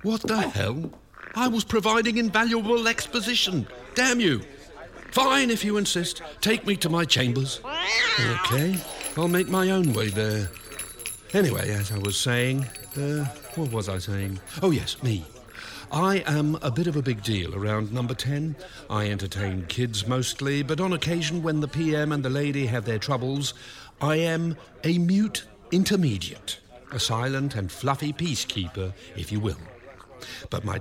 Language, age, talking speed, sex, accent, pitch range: English, 50-69, 160 wpm, male, British, 115-165 Hz